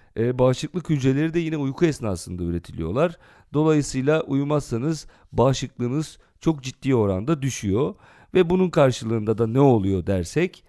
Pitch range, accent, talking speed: 120-160 Hz, native, 120 wpm